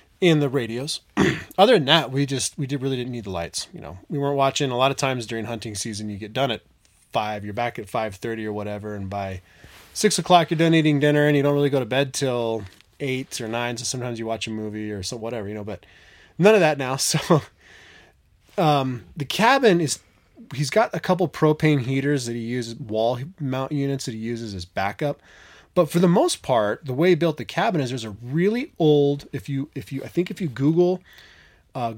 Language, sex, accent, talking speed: English, male, American, 230 wpm